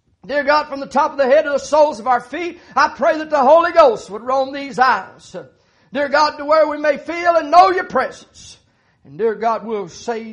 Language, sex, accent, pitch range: English, male, American, 245-320 Hz